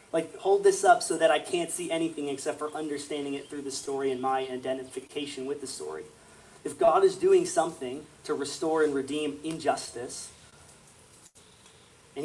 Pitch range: 130-160 Hz